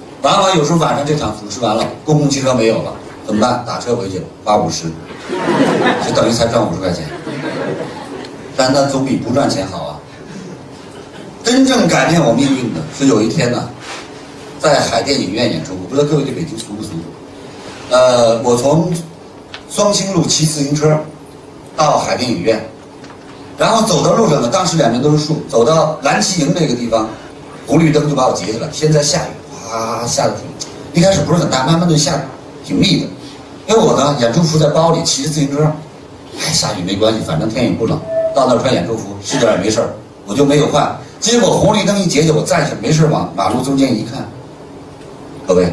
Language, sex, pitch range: Chinese, male, 120-155 Hz